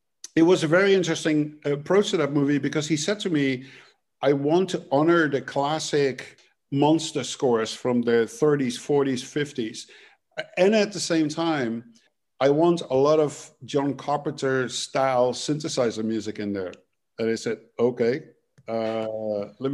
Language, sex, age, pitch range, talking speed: English, male, 50-69, 125-150 Hz, 150 wpm